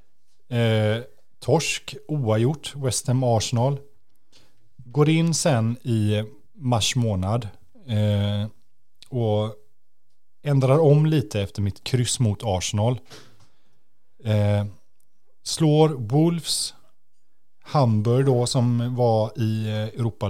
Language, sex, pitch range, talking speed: Swedish, male, 105-130 Hz, 80 wpm